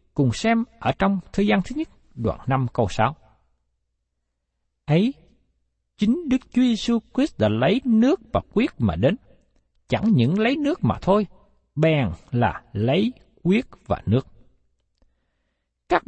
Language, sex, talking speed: Vietnamese, male, 145 wpm